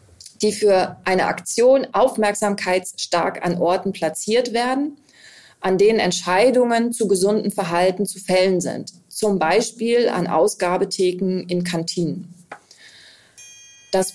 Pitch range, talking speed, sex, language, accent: 180-220 Hz, 105 wpm, female, German, German